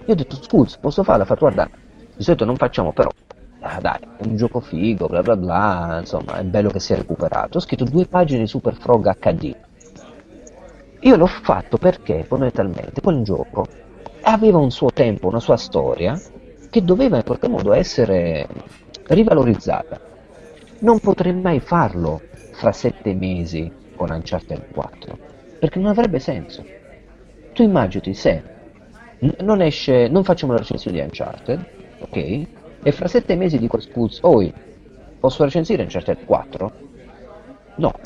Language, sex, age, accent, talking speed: Italian, male, 40-59, native, 155 wpm